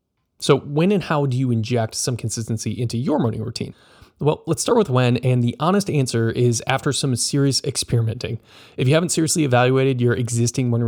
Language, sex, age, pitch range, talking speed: English, male, 20-39, 115-150 Hz, 195 wpm